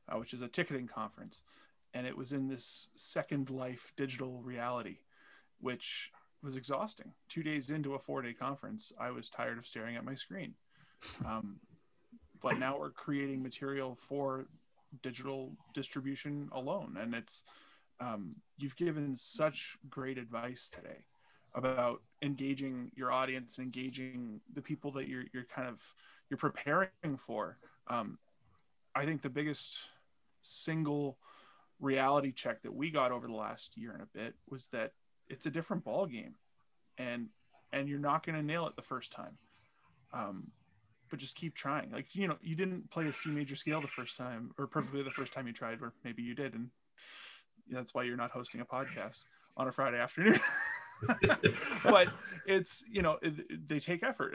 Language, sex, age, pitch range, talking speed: English, male, 20-39, 125-150 Hz, 165 wpm